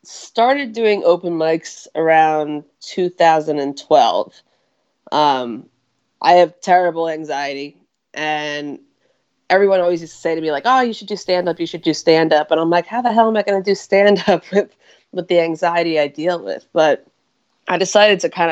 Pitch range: 155-180 Hz